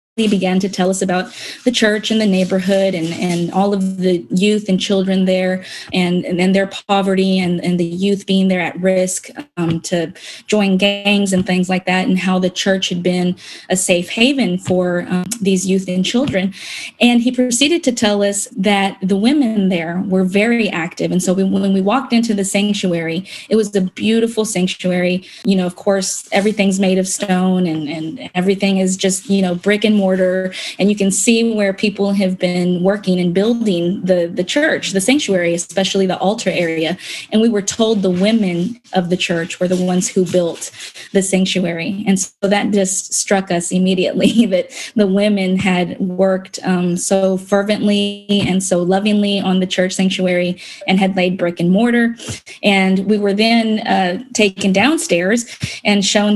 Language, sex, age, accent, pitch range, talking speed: English, female, 20-39, American, 185-205 Hz, 185 wpm